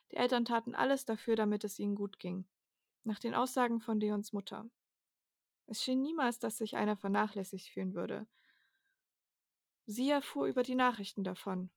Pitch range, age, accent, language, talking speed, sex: 205-240 Hz, 20-39, German, German, 160 wpm, female